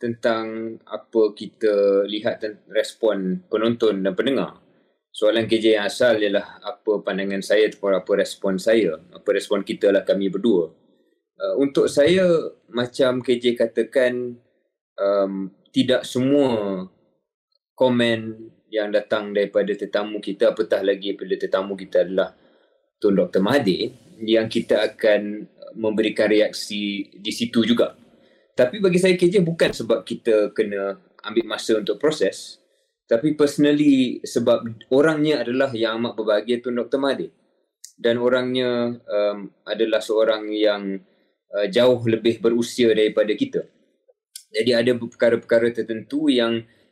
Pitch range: 105-135 Hz